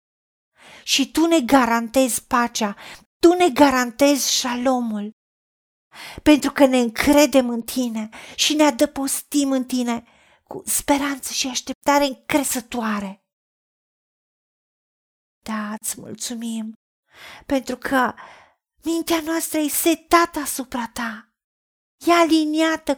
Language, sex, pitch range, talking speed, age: Romanian, female, 245-310 Hz, 95 wpm, 40-59